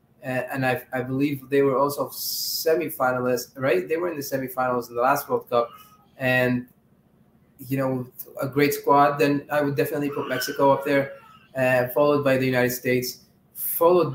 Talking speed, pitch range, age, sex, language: 175 wpm, 125-155 Hz, 20-39, male, English